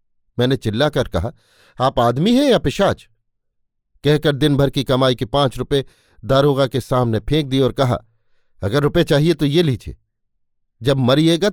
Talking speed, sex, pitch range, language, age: 165 wpm, male, 110-145 Hz, Hindi, 50-69